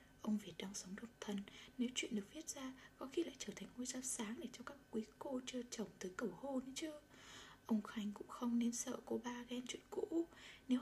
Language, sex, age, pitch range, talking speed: Vietnamese, female, 20-39, 205-255 Hz, 235 wpm